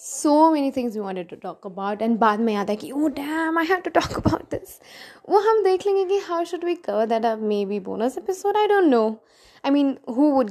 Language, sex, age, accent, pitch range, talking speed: English, female, 20-39, Indian, 220-320 Hz, 205 wpm